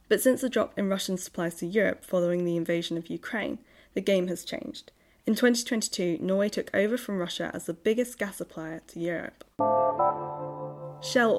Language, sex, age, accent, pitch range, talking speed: English, female, 10-29, British, 175-230 Hz, 175 wpm